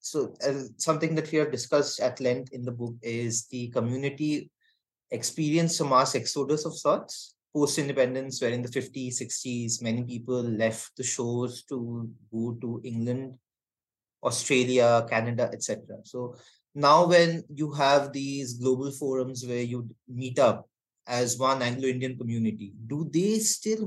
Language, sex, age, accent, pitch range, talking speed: Bengali, male, 20-39, native, 120-145 Hz, 145 wpm